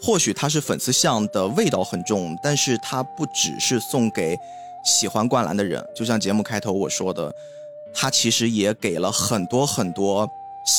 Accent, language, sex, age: native, Chinese, male, 20-39